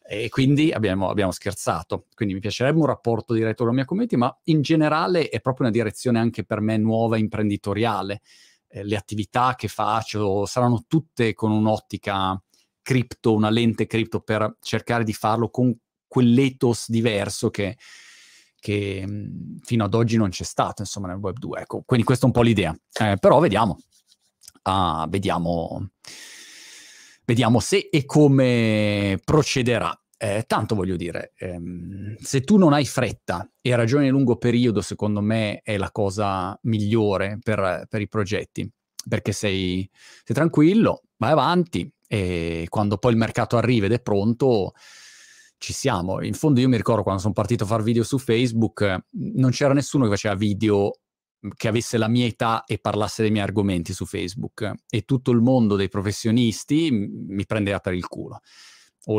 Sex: male